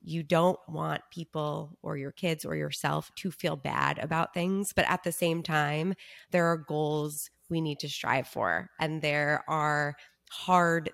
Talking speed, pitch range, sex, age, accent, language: 170 wpm, 150-175 Hz, female, 20-39, American, English